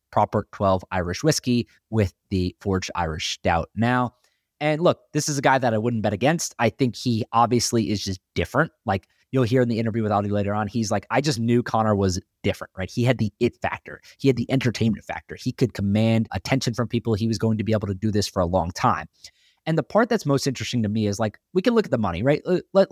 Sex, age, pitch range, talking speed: male, 20-39, 105-135 Hz, 245 wpm